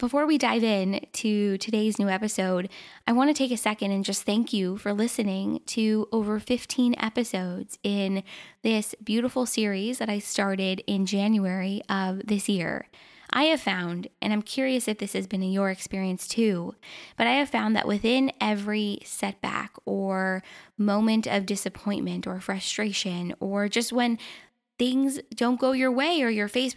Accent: American